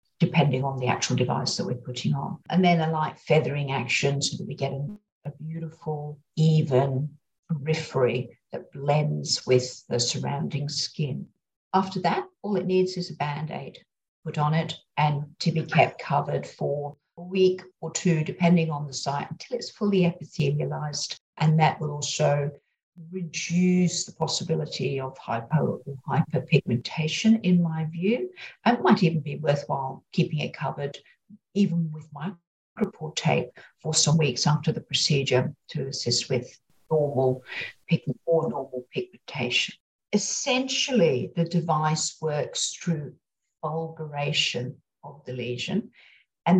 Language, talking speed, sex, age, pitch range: English, 140 wpm, female, 50-69, 145-175 Hz